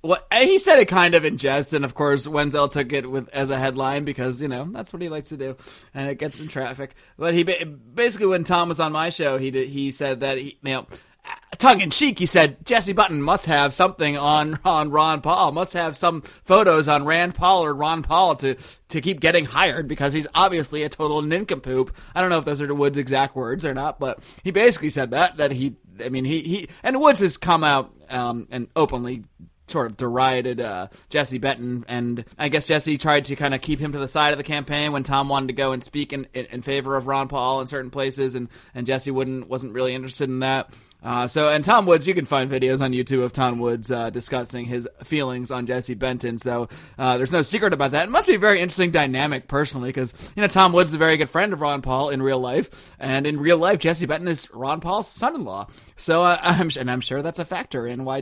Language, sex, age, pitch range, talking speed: English, male, 30-49, 130-170 Hz, 245 wpm